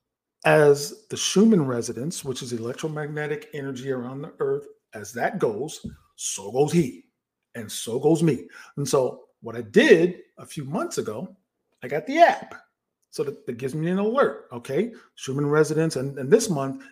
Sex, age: male, 50-69